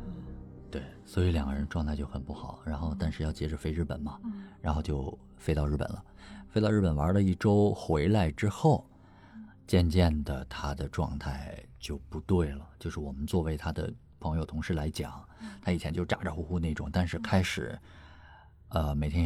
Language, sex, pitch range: Chinese, male, 75-95 Hz